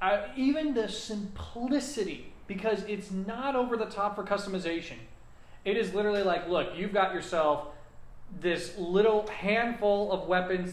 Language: English